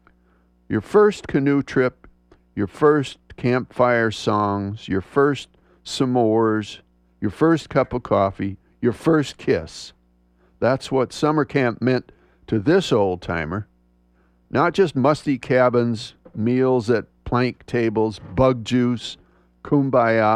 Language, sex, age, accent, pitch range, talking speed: English, male, 50-69, American, 90-135 Hz, 110 wpm